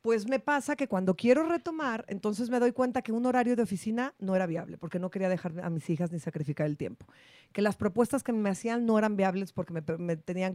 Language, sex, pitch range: Spanish, female, 180-215 Hz